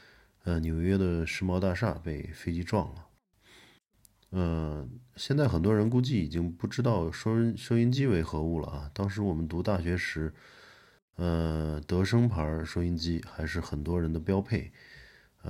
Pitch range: 80-100 Hz